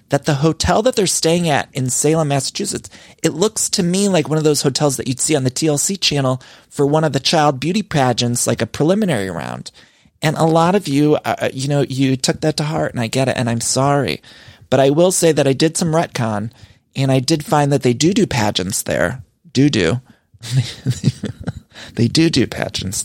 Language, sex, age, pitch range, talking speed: English, male, 30-49, 120-165 Hz, 215 wpm